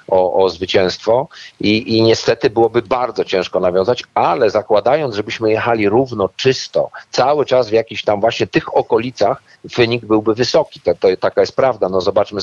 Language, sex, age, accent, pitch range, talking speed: Polish, male, 50-69, native, 105-130 Hz, 155 wpm